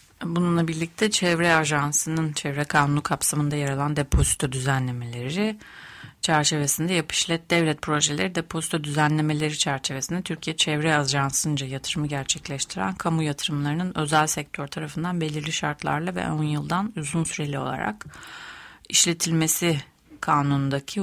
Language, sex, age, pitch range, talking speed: Turkish, female, 30-49, 145-165 Hz, 110 wpm